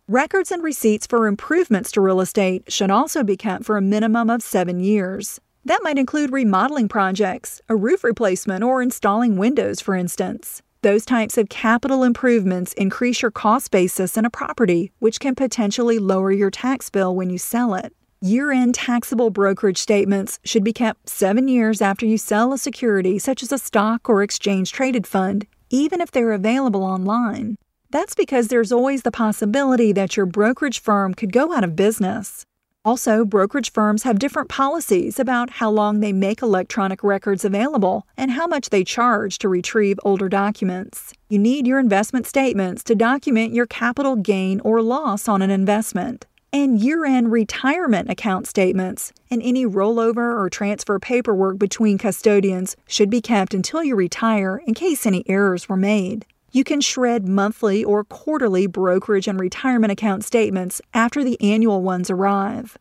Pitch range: 200-245 Hz